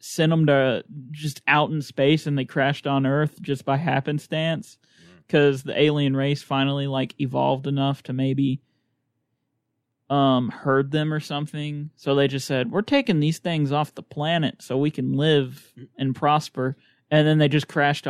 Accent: American